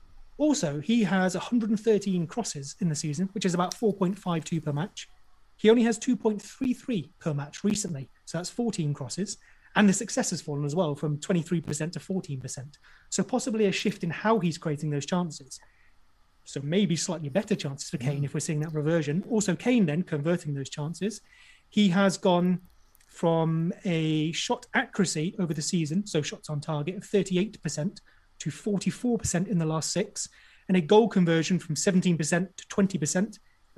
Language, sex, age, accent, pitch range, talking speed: English, male, 30-49, British, 160-200 Hz, 165 wpm